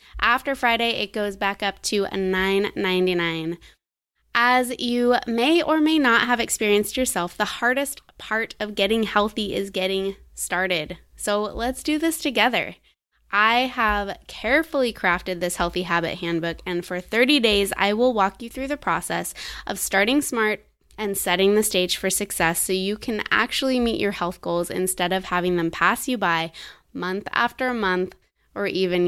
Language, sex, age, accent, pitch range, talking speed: English, female, 20-39, American, 180-225 Hz, 165 wpm